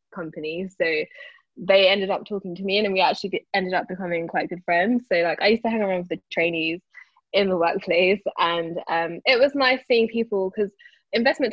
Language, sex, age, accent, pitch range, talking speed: English, female, 10-29, British, 170-210 Hz, 210 wpm